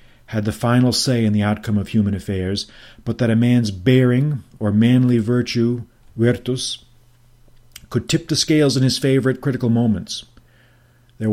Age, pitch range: 40-59, 105-120 Hz